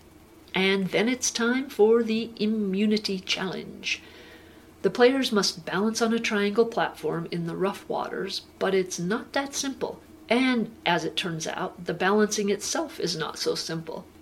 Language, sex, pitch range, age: English, female, 185-225 Hz, 50-69